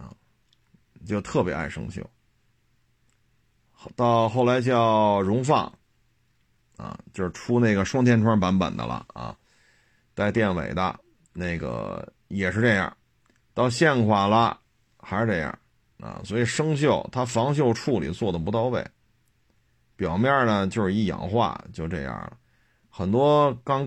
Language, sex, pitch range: Chinese, male, 100-125 Hz